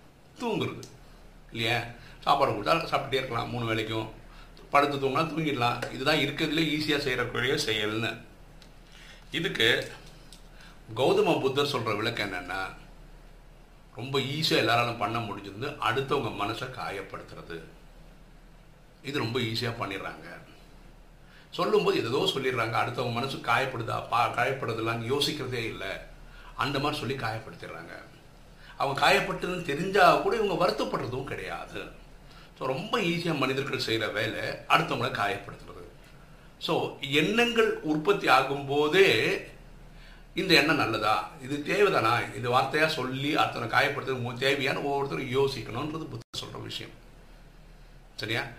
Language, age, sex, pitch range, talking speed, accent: Tamil, 50-69, male, 120-160 Hz, 105 wpm, native